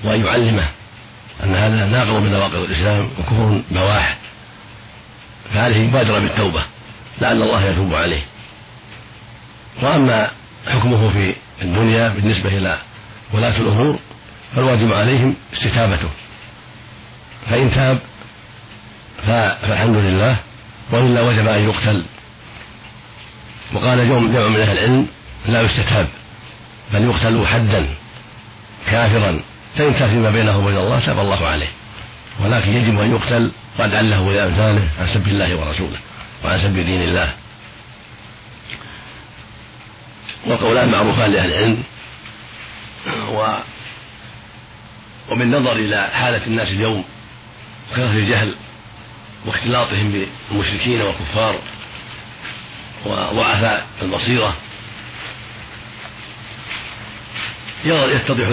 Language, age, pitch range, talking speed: Arabic, 50-69, 105-120 Hz, 90 wpm